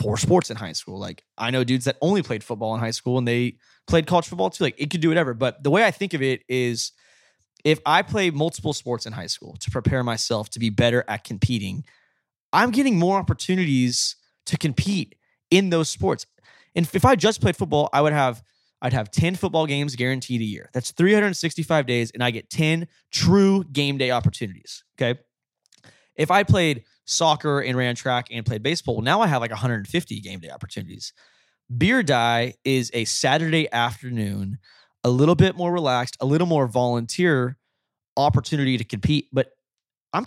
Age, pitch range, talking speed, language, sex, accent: 20-39, 120-155 Hz, 190 wpm, English, male, American